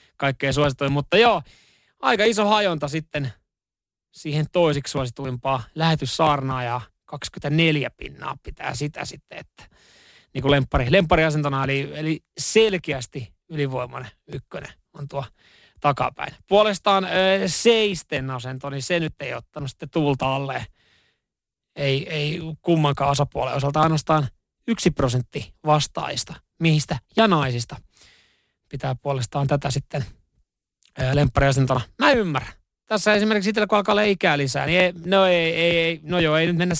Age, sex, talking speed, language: 30-49, male, 125 wpm, Finnish